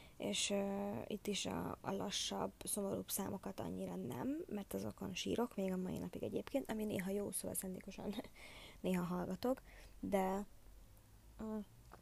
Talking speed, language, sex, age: 140 wpm, Hungarian, female, 20-39